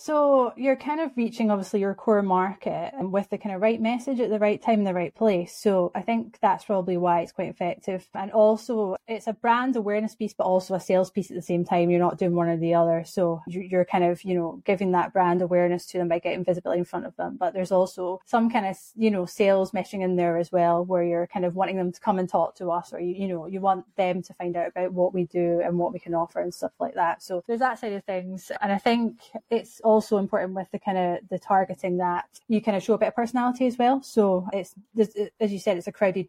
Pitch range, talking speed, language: 175-210 Hz, 265 wpm, English